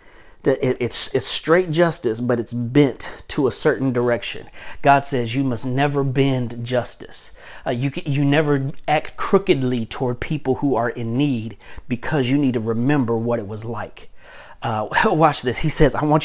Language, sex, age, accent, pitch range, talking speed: English, male, 40-59, American, 120-145 Hz, 170 wpm